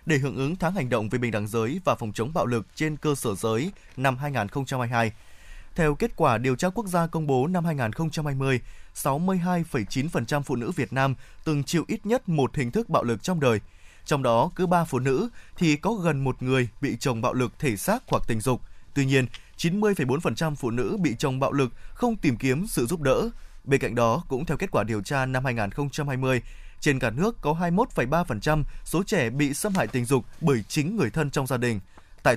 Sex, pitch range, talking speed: male, 120-160 Hz, 210 wpm